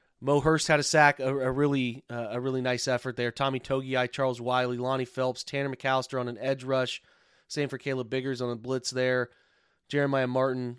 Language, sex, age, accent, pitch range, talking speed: English, male, 30-49, American, 120-135 Hz, 200 wpm